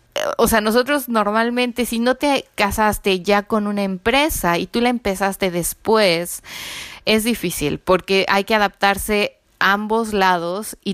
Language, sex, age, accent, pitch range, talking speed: Spanish, female, 20-39, Mexican, 190-235 Hz, 150 wpm